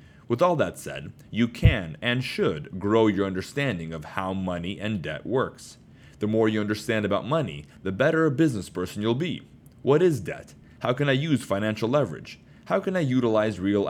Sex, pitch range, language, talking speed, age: male, 95-130 Hz, English, 190 wpm, 30-49